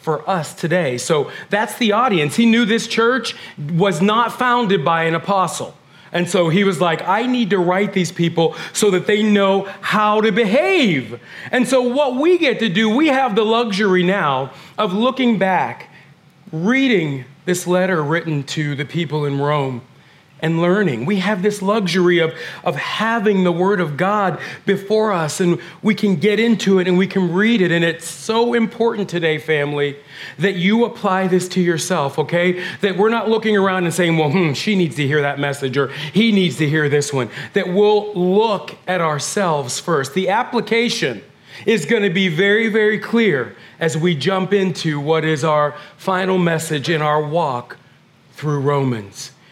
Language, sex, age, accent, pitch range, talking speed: English, male, 40-59, American, 165-230 Hz, 180 wpm